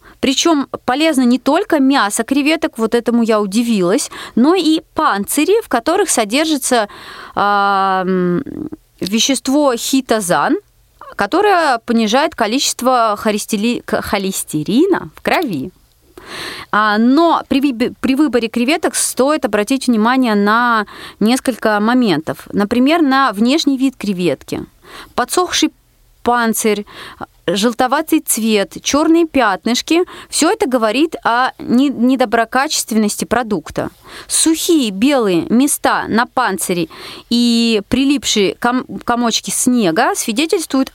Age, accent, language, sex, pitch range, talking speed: 30-49, native, Russian, female, 220-305 Hz, 90 wpm